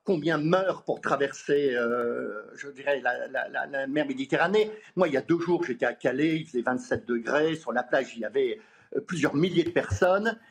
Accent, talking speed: French, 205 wpm